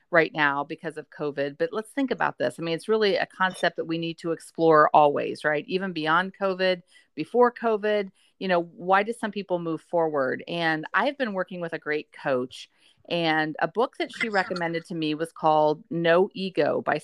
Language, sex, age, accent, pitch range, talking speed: English, female, 40-59, American, 160-195 Hz, 200 wpm